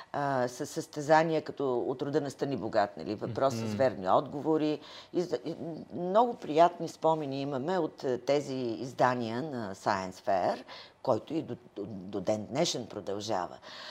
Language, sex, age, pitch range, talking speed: Bulgarian, female, 50-69, 130-170 Hz, 135 wpm